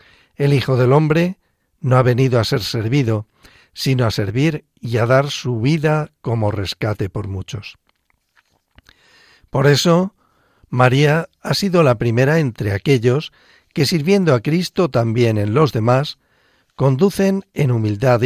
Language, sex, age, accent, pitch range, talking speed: Spanish, male, 60-79, Spanish, 110-155 Hz, 140 wpm